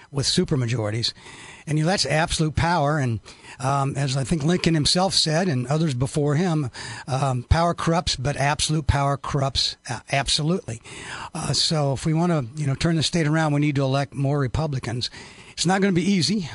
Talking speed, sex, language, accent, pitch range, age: 190 wpm, male, English, American, 140-165 Hz, 60-79